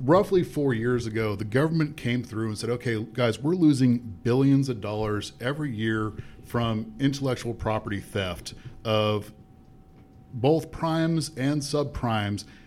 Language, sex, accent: English, male, American